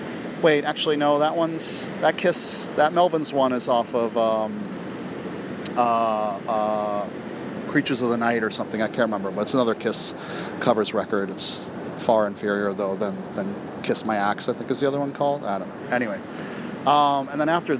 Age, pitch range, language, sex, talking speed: 40-59, 110-145 Hz, English, male, 185 wpm